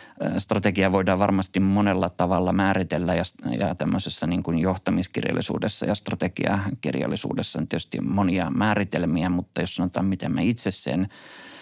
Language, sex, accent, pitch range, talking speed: Finnish, male, native, 90-105 Hz, 125 wpm